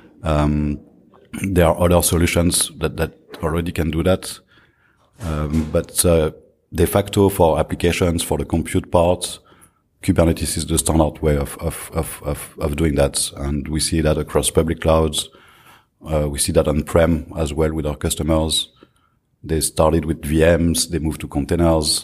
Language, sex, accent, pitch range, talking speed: German, male, French, 80-95 Hz, 160 wpm